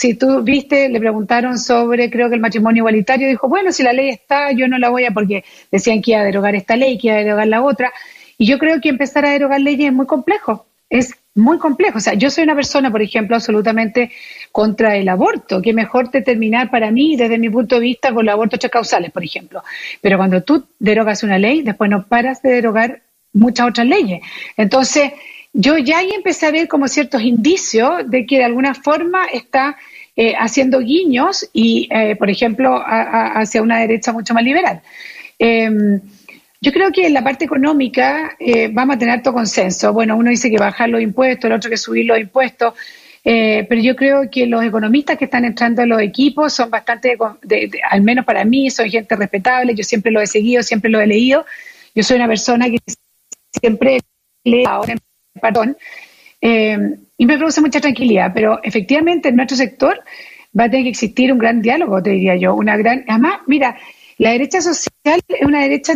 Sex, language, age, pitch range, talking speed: female, Spanish, 40-59, 225-280 Hz, 205 wpm